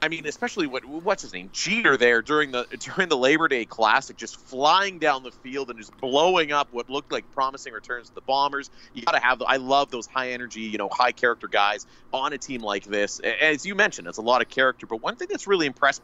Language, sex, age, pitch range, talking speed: English, male, 30-49, 120-155 Hz, 235 wpm